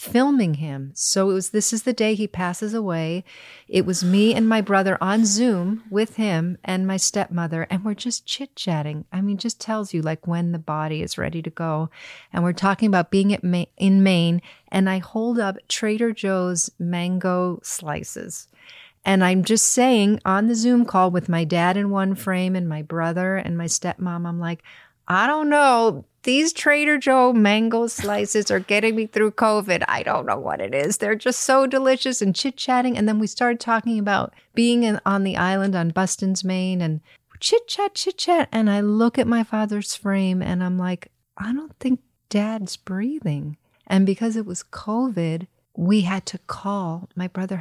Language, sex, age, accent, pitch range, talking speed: English, female, 40-59, American, 180-225 Hz, 185 wpm